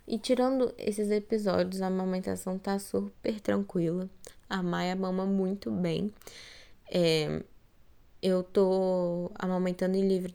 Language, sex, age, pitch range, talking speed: Portuguese, female, 10-29, 180-205 Hz, 115 wpm